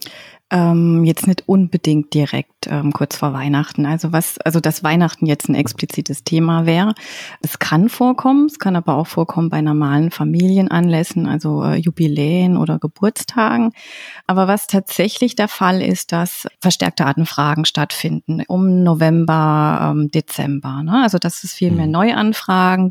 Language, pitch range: German, 155-185 Hz